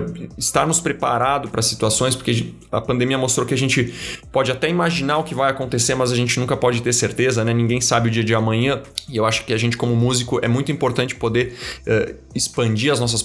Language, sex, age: Portuguese, male, 30-49